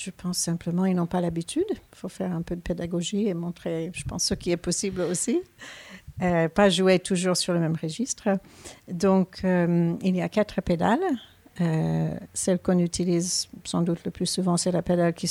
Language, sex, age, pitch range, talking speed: French, female, 60-79, 165-185 Hz, 200 wpm